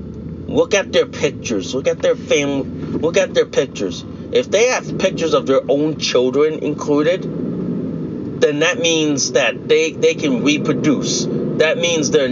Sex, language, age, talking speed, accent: male, English, 30-49, 155 wpm, American